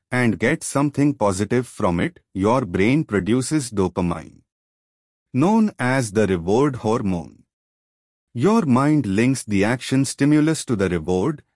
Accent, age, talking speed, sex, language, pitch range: native, 30-49, 125 wpm, male, Hindi, 100-145 Hz